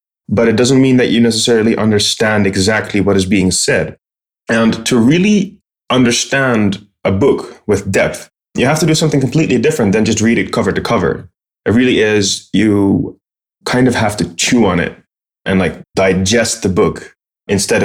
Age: 20-39